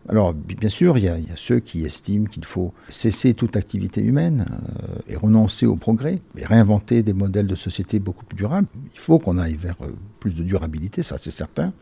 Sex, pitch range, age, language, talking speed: male, 95-125 Hz, 60-79, French, 220 wpm